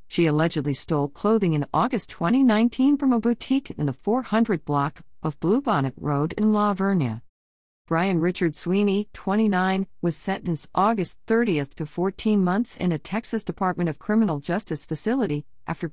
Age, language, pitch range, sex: 50-69, English, 150-210 Hz, female